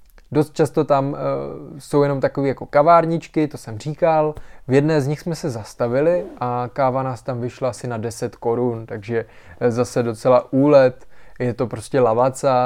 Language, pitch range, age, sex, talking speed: Czech, 115-140 Hz, 20-39, male, 165 wpm